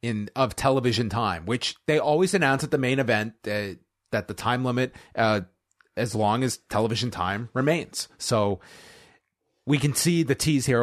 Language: English